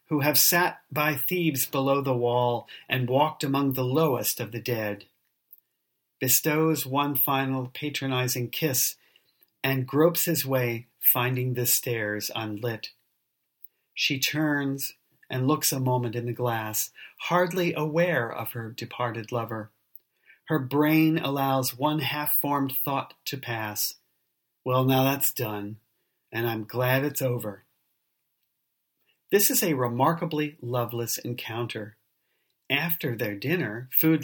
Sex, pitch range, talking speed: male, 120-150 Hz, 125 wpm